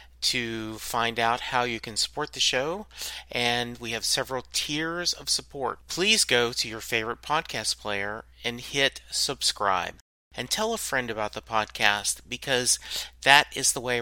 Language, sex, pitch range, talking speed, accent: English, male, 105-130 Hz, 165 wpm, American